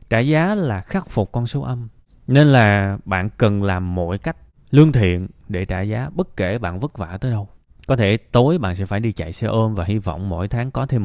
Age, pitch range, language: 20-39, 95-130 Hz, Vietnamese